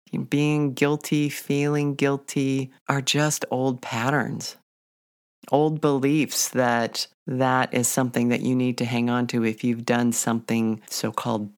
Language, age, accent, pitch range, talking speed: English, 40-59, American, 120-155 Hz, 140 wpm